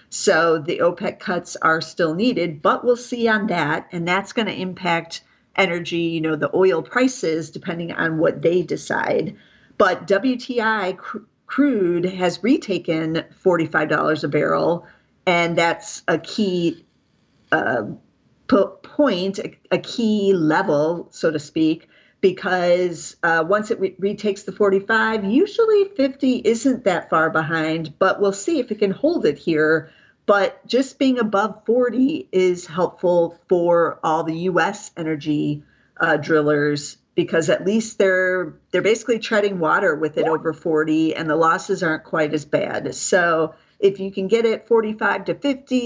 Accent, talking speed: American, 145 wpm